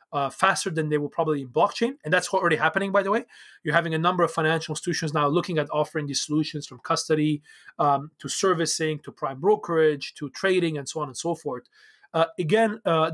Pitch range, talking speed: 150-180 Hz, 215 wpm